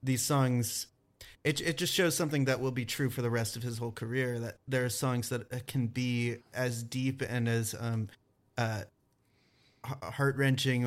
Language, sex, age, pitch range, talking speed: English, male, 30-49, 115-130 Hz, 180 wpm